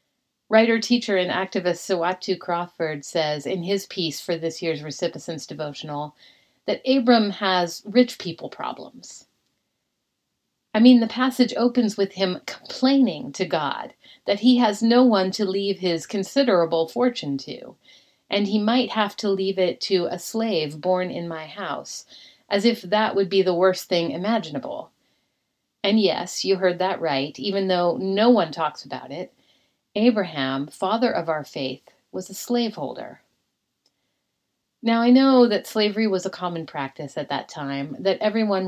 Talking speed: 155 wpm